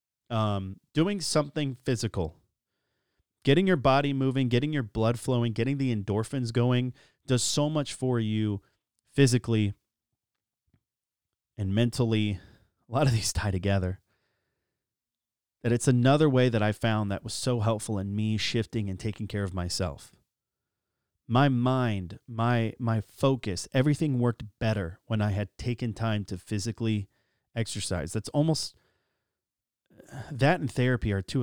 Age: 30-49